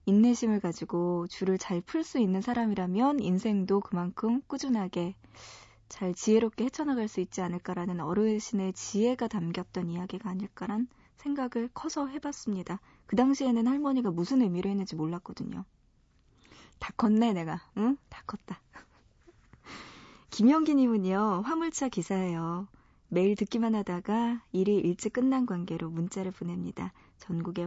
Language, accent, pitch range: Korean, native, 175-235 Hz